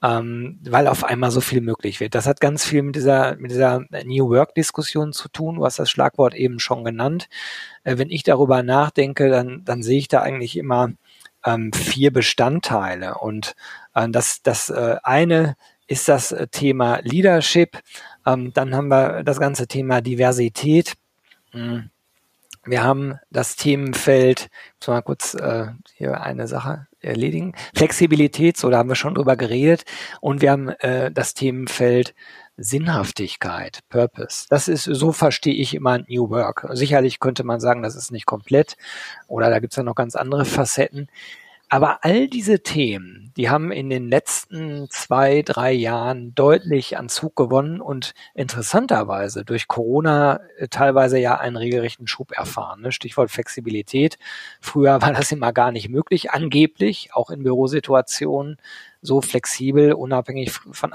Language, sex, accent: German, male, German